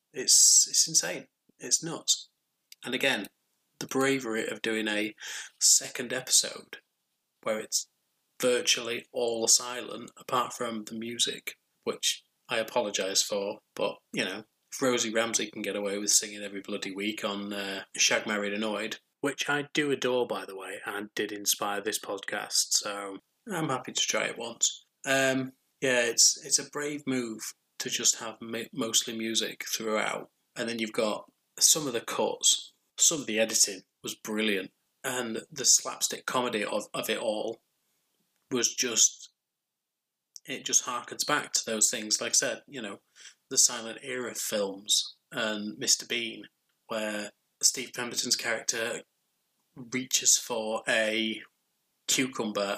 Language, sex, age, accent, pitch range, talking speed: English, male, 20-39, British, 105-125 Hz, 145 wpm